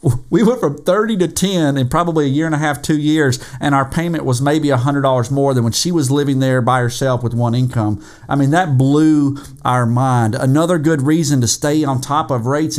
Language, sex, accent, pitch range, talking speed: English, male, American, 130-160 Hz, 225 wpm